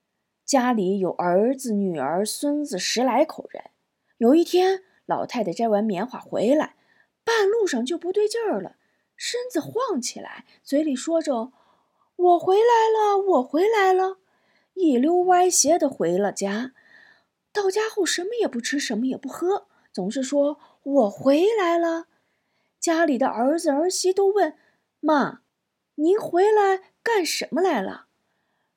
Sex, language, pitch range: female, Chinese, 265-380 Hz